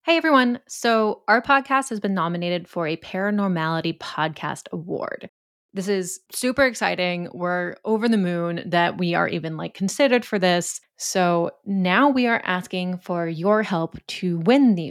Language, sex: English, female